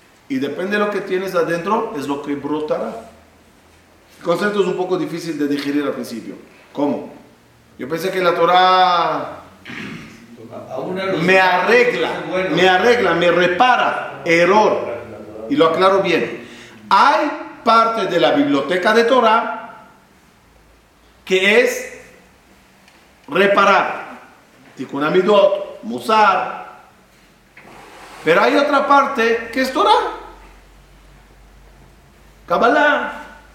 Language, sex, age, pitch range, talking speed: Spanish, male, 50-69, 150-230 Hz, 105 wpm